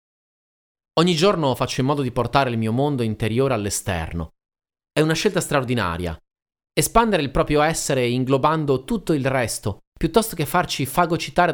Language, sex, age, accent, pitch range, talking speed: Italian, male, 30-49, native, 110-155 Hz, 145 wpm